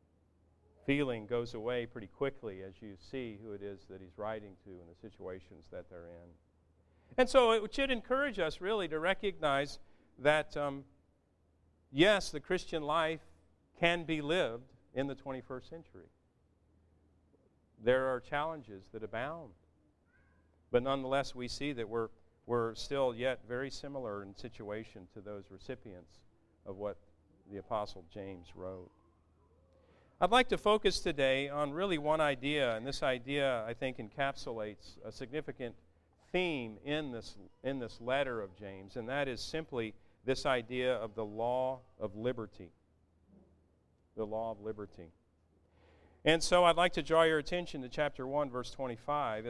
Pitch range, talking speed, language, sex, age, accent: 95-145 Hz, 150 wpm, English, male, 50-69, American